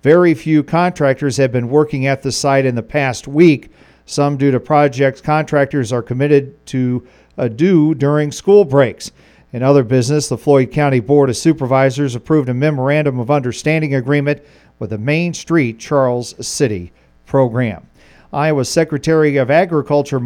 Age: 50-69